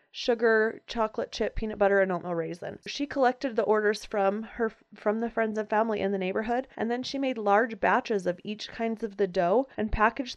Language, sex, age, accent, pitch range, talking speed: English, female, 30-49, American, 200-245 Hz, 210 wpm